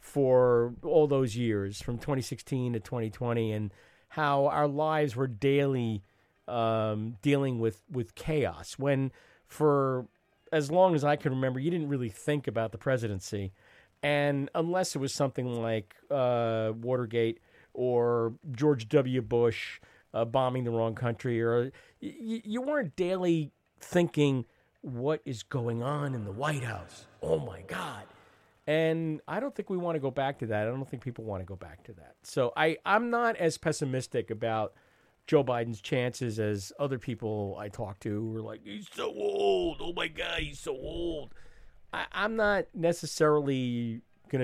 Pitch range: 115-150 Hz